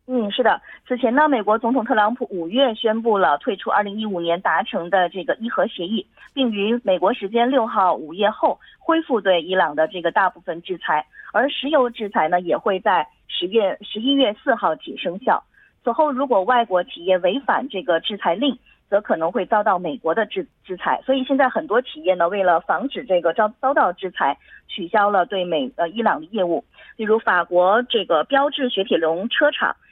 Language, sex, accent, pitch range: Korean, female, Chinese, 180-265 Hz